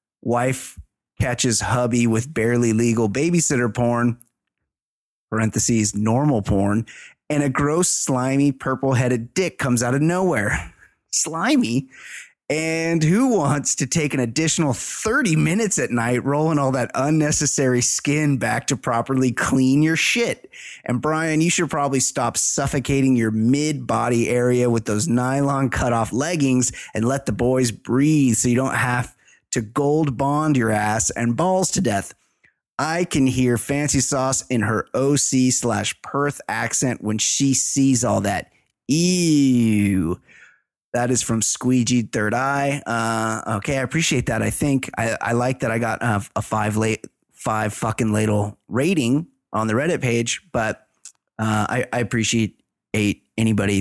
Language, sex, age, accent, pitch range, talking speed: English, male, 30-49, American, 110-140 Hz, 145 wpm